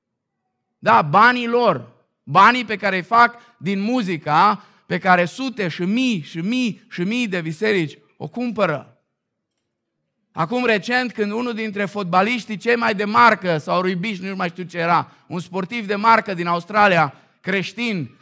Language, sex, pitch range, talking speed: Romanian, male, 155-210 Hz, 155 wpm